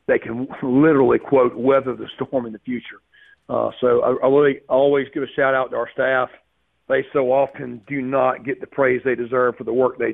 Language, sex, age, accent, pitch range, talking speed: English, male, 40-59, American, 125-135 Hz, 205 wpm